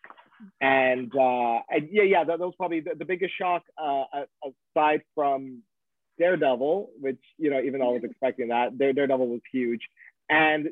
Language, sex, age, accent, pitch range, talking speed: English, male, 30-49, American, 135-200 Hz, 175 wpm